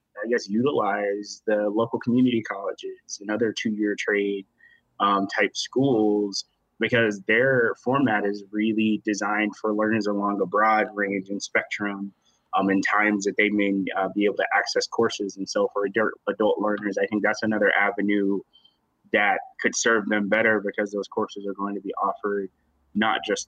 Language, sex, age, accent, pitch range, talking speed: English, male, 20-39, American, 100-110 Hz, 165 wpm